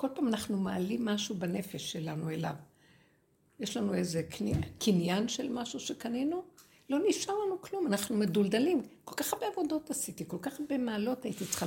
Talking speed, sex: 170 wpm, female